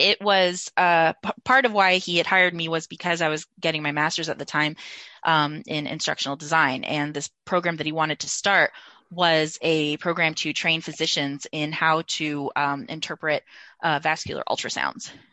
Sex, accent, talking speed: female, American, 180 wpm